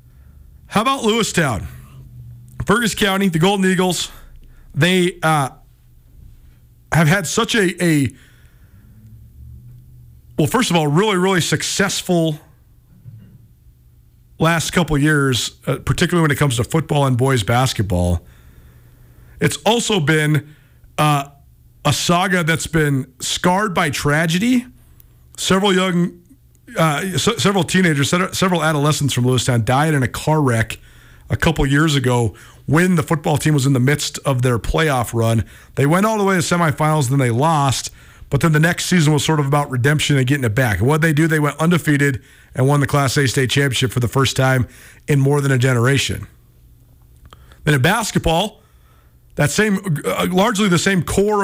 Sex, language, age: male, English, 40-59